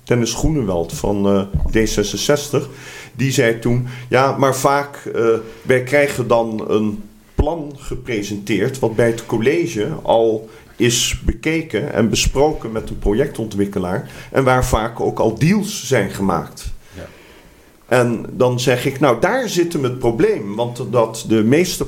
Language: Dutch